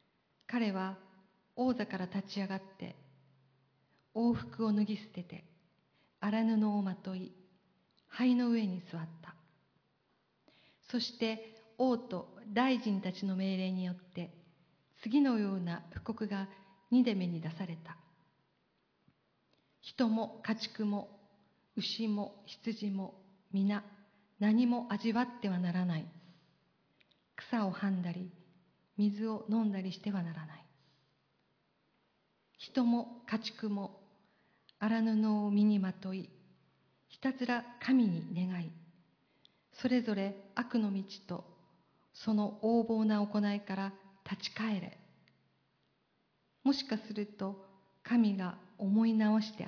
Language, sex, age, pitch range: Japanese, female, 50-69, 180-220 Hz